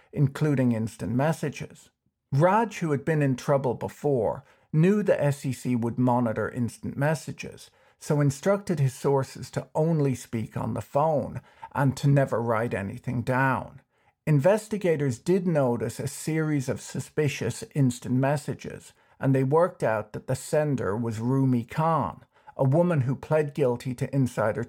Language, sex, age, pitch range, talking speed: English, male, 50-69, 120-145 Hz, 145 wpm